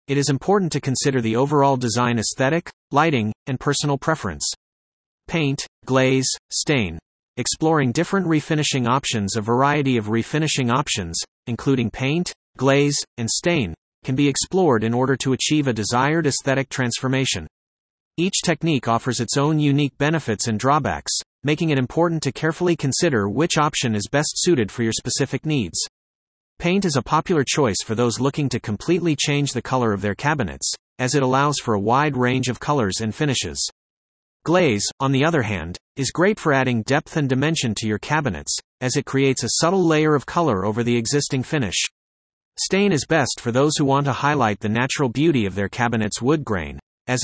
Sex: male